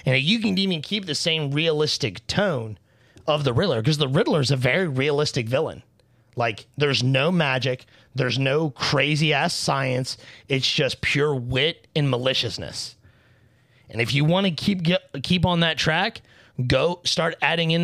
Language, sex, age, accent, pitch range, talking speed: English, male, 30-49, American, 120-155 Hz, 160 wpm